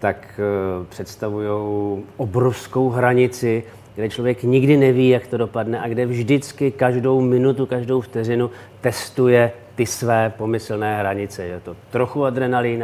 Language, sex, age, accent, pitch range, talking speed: Czech, male, 40-59, native, 110-130 Hz, 125 wpm